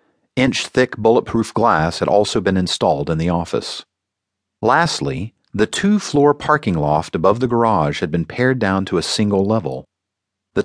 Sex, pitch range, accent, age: male, 95-130 Hz, American, 40-59